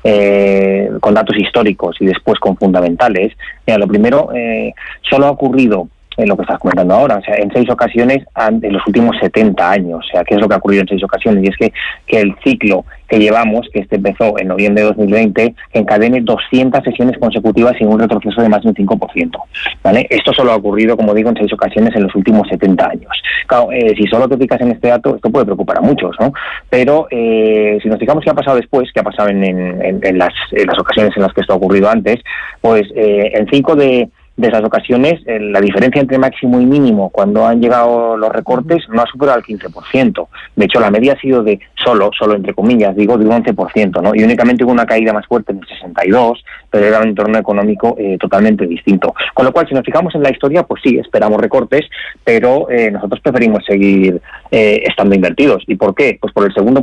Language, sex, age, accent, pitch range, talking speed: Spanish, male, 30-49, Spanish, 100-125 Hz, 220 wpm